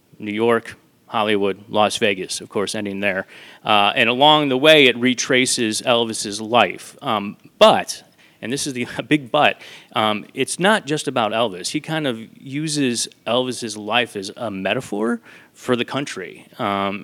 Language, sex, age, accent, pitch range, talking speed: English, male, 30-49, American, 110-130 Hz, 145 wpm